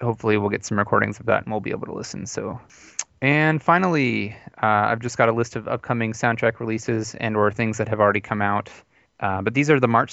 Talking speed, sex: 235 wpm, male